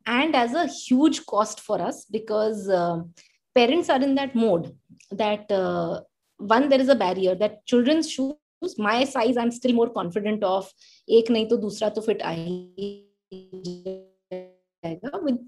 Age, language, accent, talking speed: 20-39, English, Indian, 125 wpm